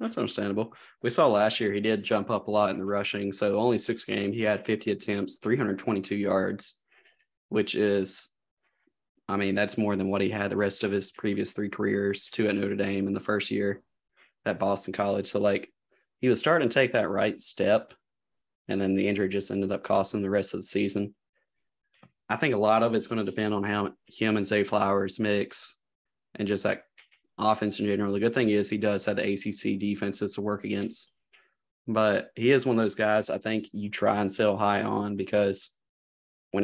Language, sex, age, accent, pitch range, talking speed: English, male, 20-39, American, 100-105 Hz, 210 wpm